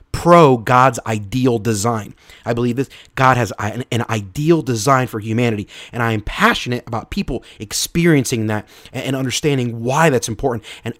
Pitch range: 110-145 Hz